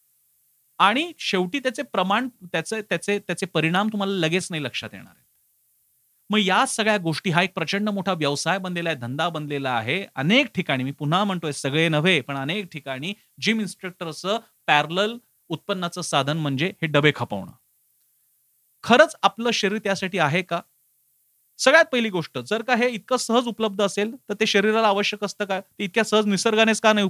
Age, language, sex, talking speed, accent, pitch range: 40-59, Marathi, male, 165 wpm, native, 150-210 Hz